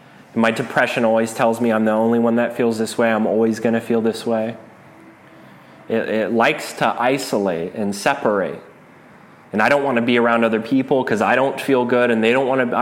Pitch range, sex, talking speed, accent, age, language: 115-140 Hz, male, 210 wpm, American, 30-49, English